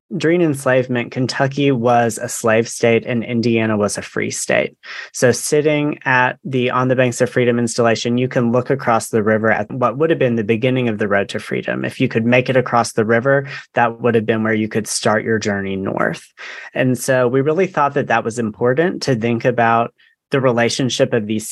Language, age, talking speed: English, 30-49, 210 wpm